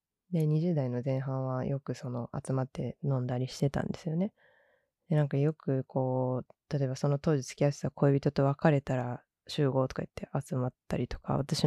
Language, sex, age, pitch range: Japanese, female, 20-39, 130-160 Hz